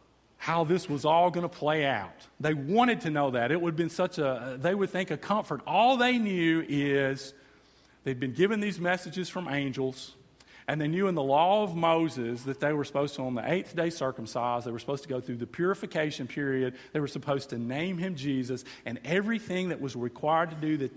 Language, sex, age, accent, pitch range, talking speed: English, male, 40-59, American, 140-190 Hz, 220 wpm